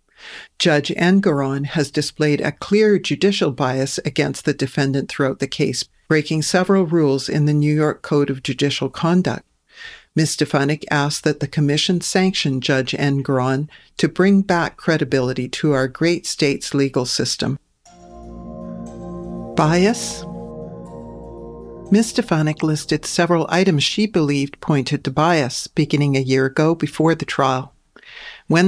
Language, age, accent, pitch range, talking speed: English, 50-69, American, 140-170 Hz, 135 wpm